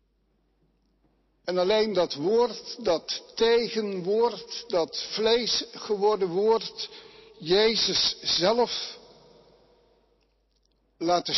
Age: 60-79